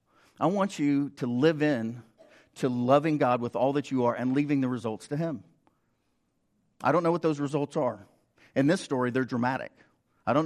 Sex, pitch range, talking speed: male, 100-140 Hz, 195 wpm